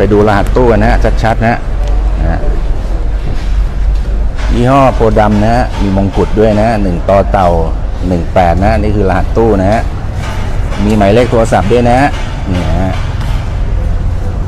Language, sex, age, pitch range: Thai, male, 60-79, 85-120 Hz